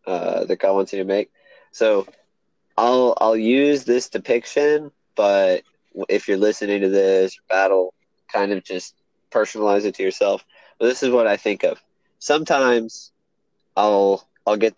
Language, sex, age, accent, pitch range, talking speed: English, male, 20-39, American, 95-120 Hz, 155 wpm